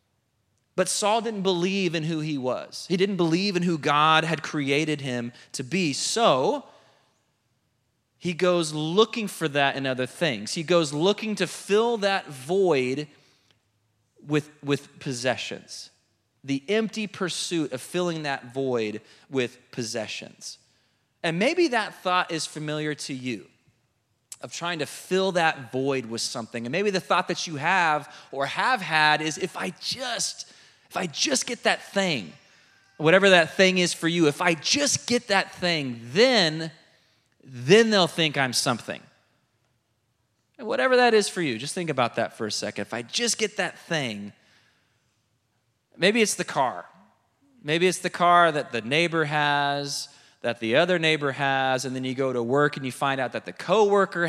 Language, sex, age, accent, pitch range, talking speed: English, male, 30-49, American, 125-180 Hz, 165 wpm